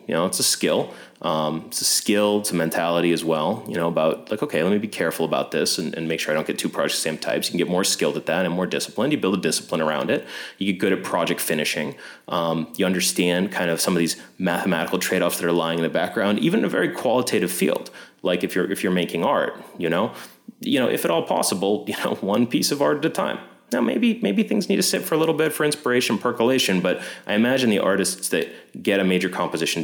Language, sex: English, male